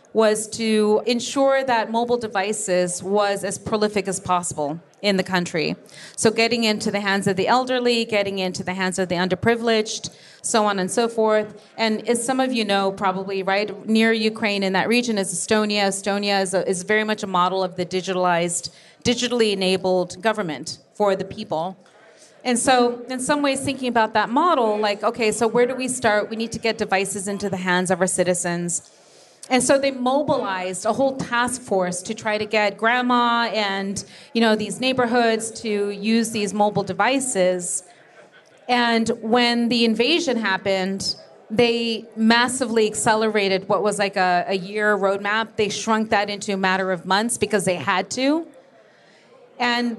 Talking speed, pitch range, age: 170 wpm, 195-235 Hz, 30-49